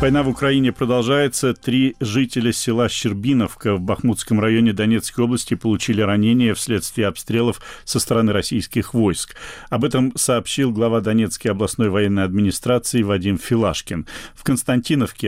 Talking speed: 130 wpm